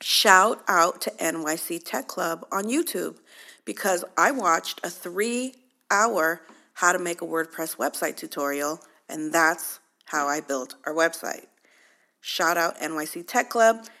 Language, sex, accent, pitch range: English, female, American, 160-195 Hz